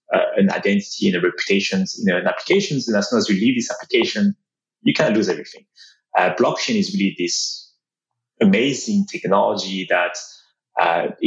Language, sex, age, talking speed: English, male, 20-39, 165 wpm